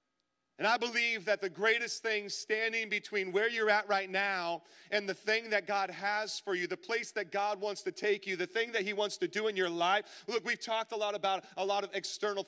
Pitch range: 150-215 Hz